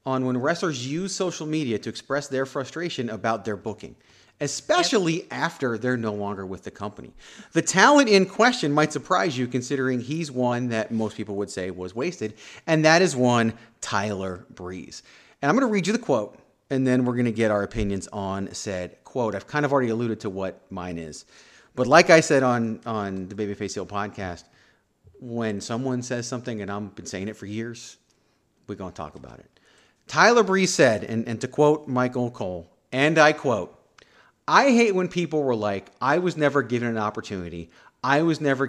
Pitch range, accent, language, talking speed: 105-155 Hz, American, English, 195 wpm